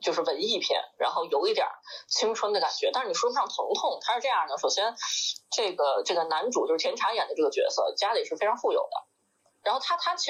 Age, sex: 20-39, female